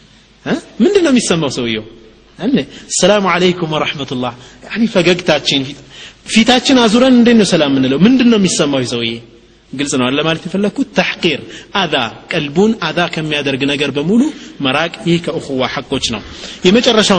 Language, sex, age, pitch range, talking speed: Amharic, male, 30-49, 140-215 Hz, 120 wpm